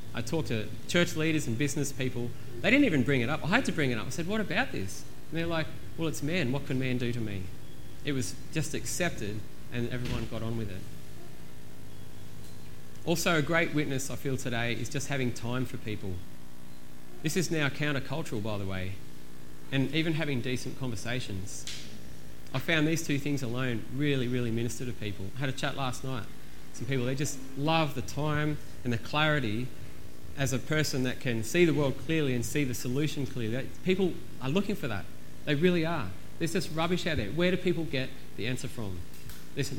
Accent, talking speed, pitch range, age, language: Australian, 200 wpm, 115-150 Hz, 30-49, English